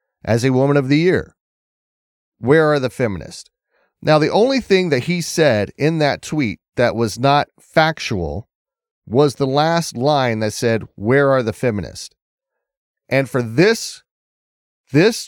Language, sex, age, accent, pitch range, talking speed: English, male, 30-49, American, 115-145 Hz, 150 wpm